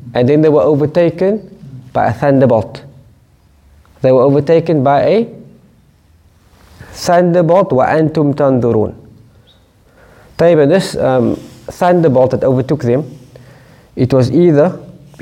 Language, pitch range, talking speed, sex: English, 115-145 Hz, 100 wpm, male